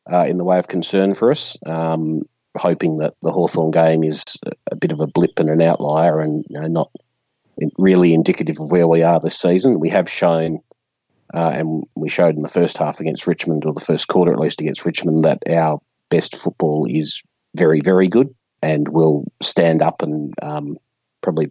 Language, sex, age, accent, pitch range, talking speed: English, male, 40-59, Australian, 80-85 Hz, 195 wpm